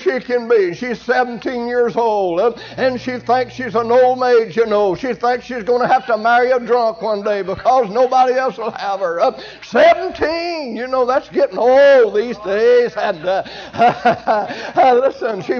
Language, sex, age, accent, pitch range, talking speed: English, male, 60-79, American, 230-260 Hz, 185 wpm